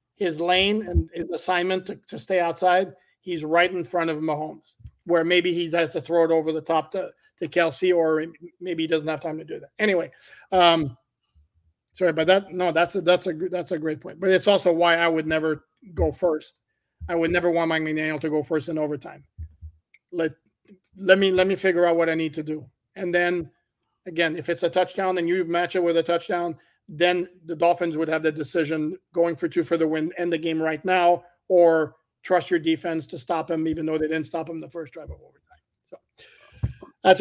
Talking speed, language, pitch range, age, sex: 220 wpm, English, 155-180 Hz, 50-69, male